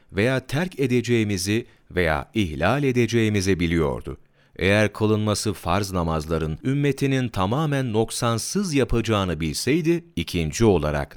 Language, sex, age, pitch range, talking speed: Turkish, male, 40-59, 85-120 Hz, 95 wpm